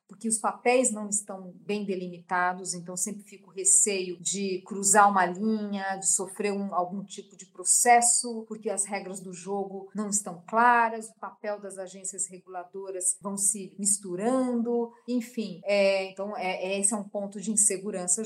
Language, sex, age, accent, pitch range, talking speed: Portuguese, female, 40-59, Brazilian, 190-225 Hz, 160 wpm